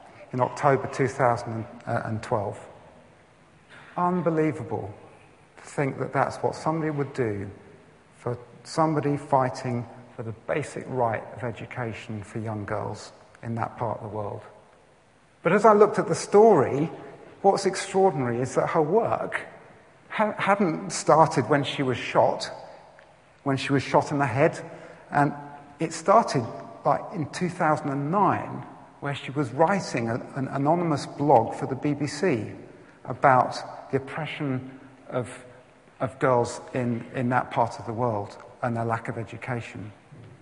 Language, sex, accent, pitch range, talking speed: English, male, British, 120-155 Hz, 135 wpm